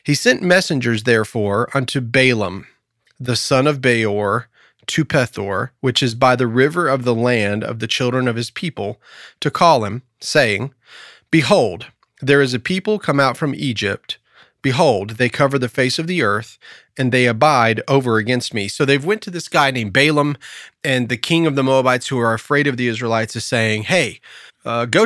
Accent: American